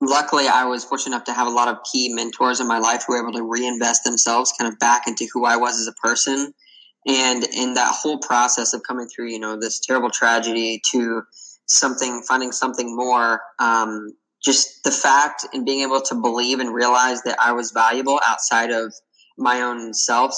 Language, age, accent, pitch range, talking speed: English, 10-29, American, 115-125 Hz, 205 wpm